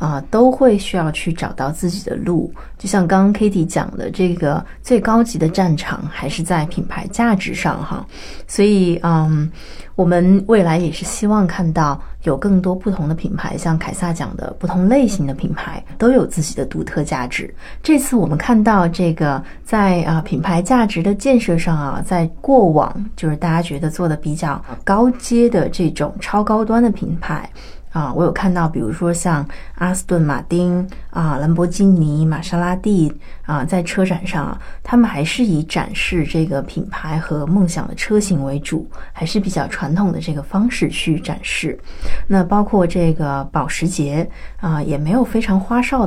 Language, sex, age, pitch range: Chinese, female, 20-39, 160-200 Hz